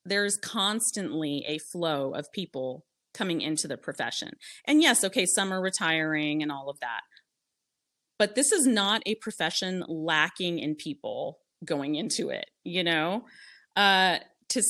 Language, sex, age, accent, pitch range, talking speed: English, female, 30-49, American, 155-200 Hz, 145 wpm